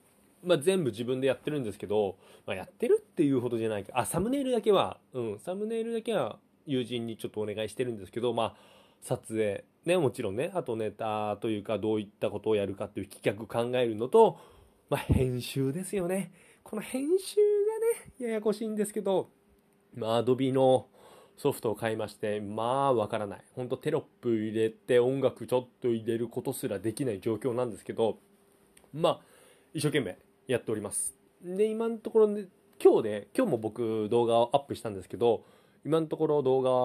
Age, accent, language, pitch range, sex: 20-39, native, Japanese, 115-185 Hz, male